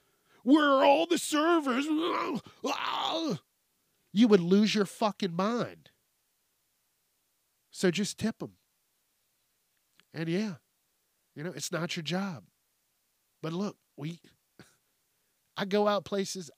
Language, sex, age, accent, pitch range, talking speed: English, male, 40-59, American, 160-210 Hz, 105 wpm